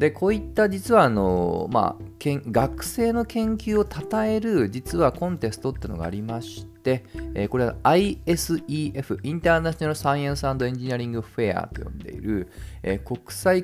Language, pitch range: Japanese, 100-165 Hz